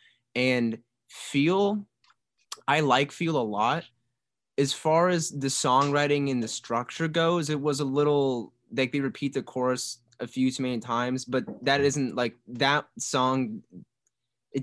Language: English